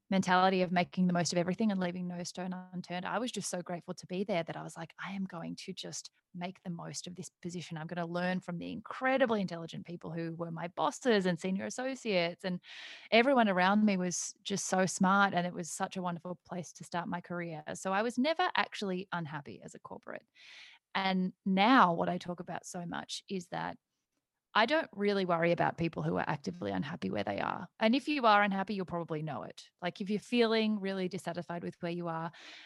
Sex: female